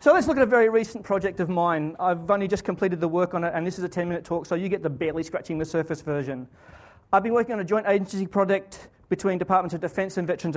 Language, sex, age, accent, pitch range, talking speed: English, male, 30-49, Australian, 170-210 Hz, 275 wpm